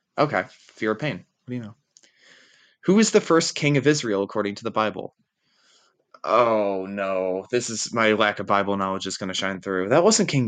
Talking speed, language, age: 205 wpm, English, 20-39